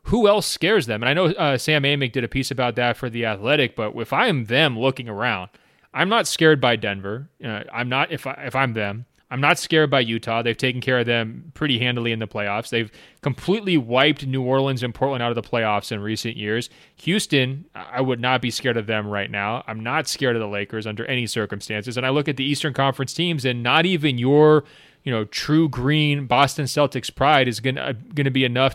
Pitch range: 120-150 Hz